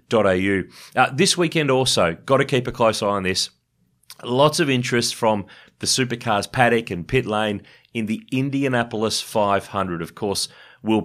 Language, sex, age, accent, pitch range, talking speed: English, male, 30-49, Australian, 100-135 Hz, 160 wpm